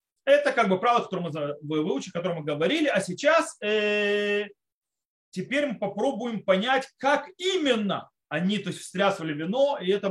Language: Russian